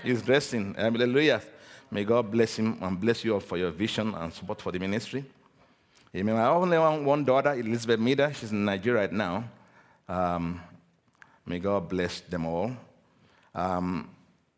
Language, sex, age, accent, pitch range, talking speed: English, male, 50-69, Nigerian, 105-140 Hz, 160 wpm